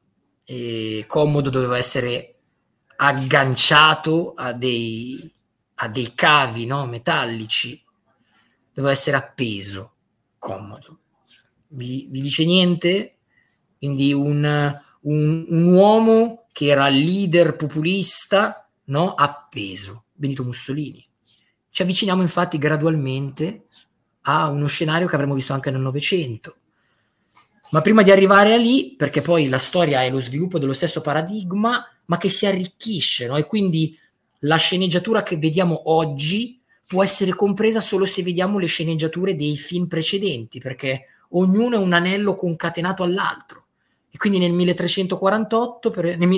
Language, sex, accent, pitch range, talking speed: Italian, male, native, 135-185 Hz, 125 wpm